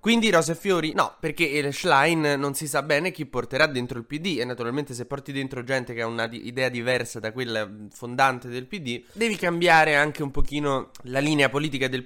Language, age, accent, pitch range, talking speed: Italian, 20-39, native, 115-145 Hz, 205 wpm